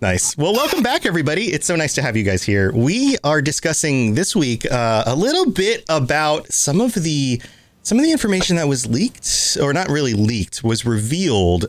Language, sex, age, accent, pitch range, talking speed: English, male, 30-49, American, 110-155 Hz, 200 wpm